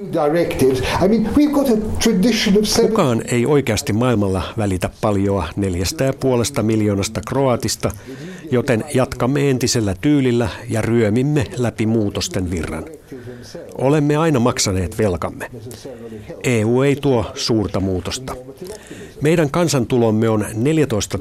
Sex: male